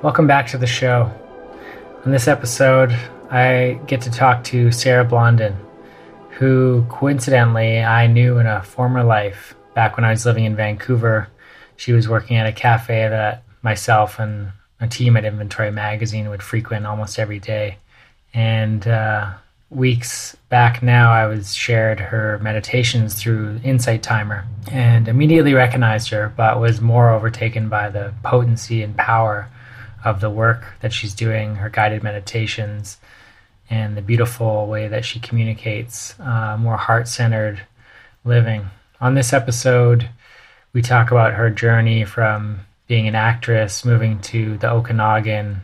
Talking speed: 145 wpm